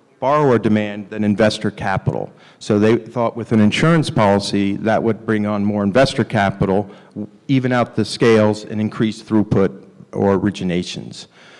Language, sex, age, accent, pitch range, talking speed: English, male, 40-59, American, 105-120 Hz, 145 wpm